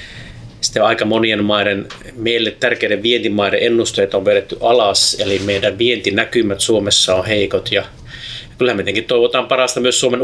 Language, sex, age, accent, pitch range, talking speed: Finnish, male, 30-49, native, 110-130 Hz, 150 wpm